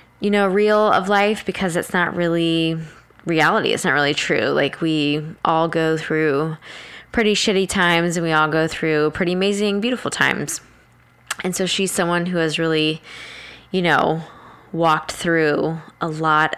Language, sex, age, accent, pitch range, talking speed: English, female, 10-29, American, 155-190 Hz, 160 wpm